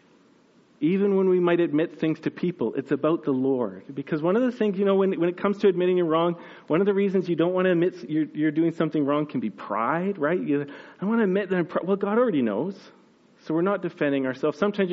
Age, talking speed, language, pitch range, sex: 40-59, 255 wpm, English, 140-180 Hz, male